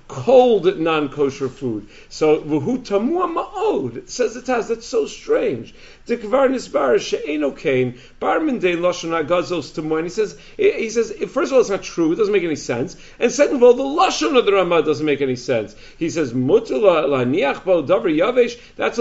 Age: 50-69